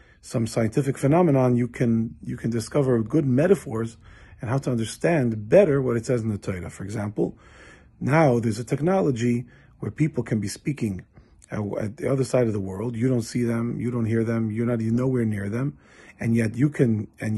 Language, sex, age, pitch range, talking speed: English, male, 40-59, 115-140 Hz, 200 wpm